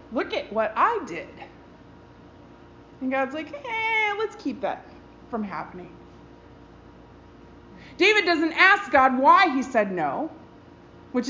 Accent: American